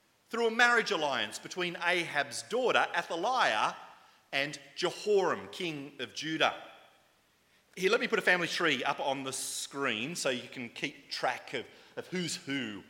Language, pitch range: English, 140-200 Hz